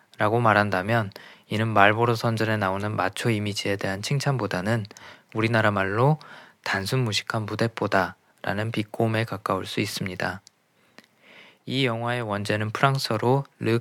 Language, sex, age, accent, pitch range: Korean, male, 20-39, native, 100-120 Hz